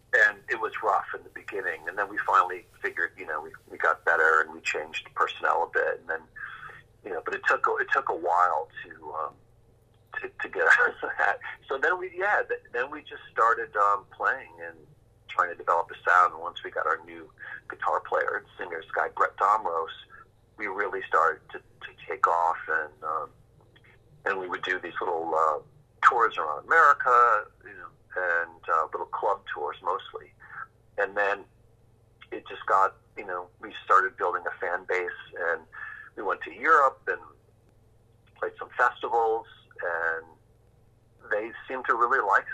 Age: 40-59